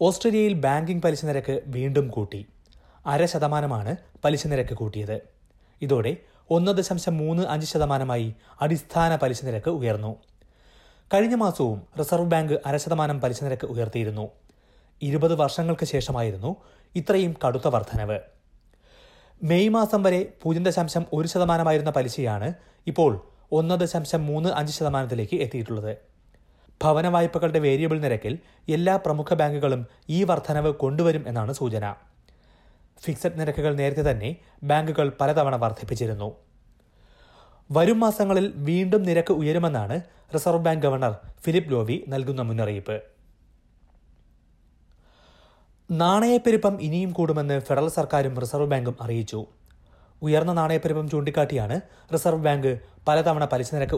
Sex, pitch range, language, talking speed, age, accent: male, 115-165 Hz, Malayalam, 95 wpm, 30-49, native